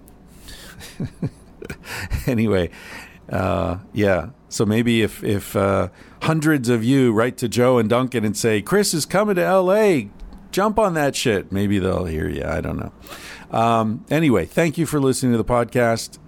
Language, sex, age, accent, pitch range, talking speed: English, male, 50-69, American, 90-115 Hz, 160 wpm